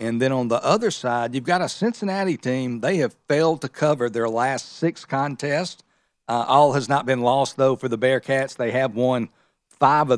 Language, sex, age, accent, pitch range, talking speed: English, male, 50-69, American, 120-135 Hz, 205 wpm